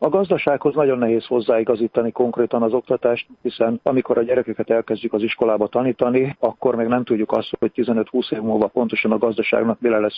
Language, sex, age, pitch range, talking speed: Hungarian, male, 50-69, 110-125 Hz, 175 wpm